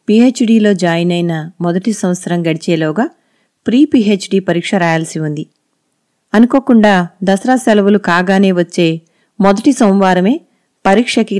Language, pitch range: Telugu, 175-225 Hz